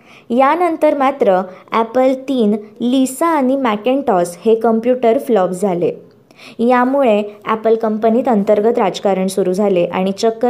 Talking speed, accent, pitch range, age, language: 115 wpm, native, 195-245 Hz, 20-39, Marathi